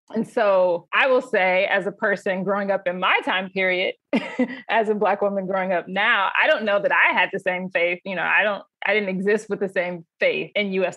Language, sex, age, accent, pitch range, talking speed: English, female, 20-39, American, 180-215 Hz, 235 wpm